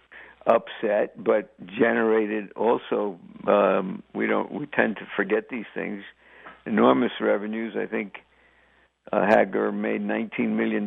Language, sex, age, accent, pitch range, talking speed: English, male, 60-79, American, 105-135 Hz, 120 wpm